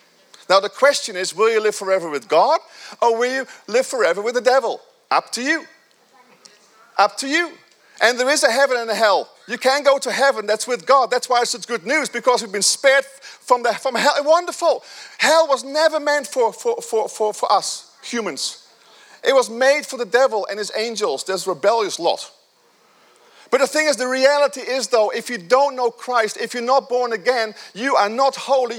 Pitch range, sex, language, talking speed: 220-320 Hz, male, English, 215 wpm